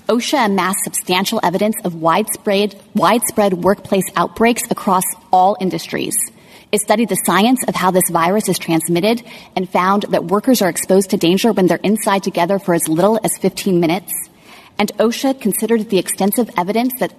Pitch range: 180-220 Hz